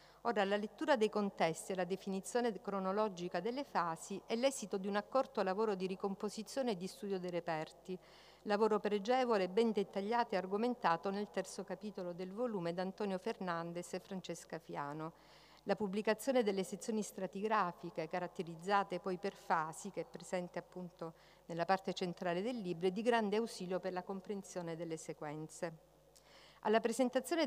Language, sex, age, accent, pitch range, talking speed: Italian, female, 50-69, native, 175-210 Hz, 155 wpm